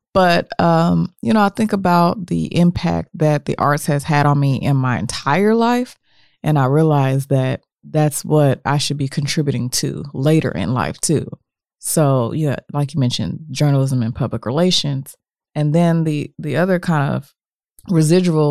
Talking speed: 170 wpm